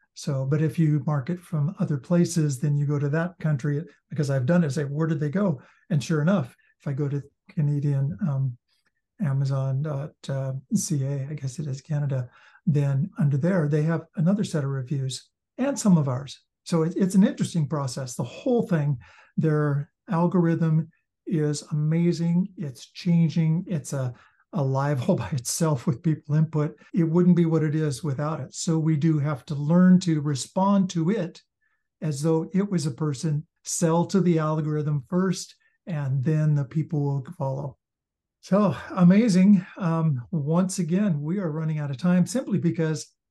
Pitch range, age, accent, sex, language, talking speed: 145-175 Hz, 60-79, American, male, English, 170 wpm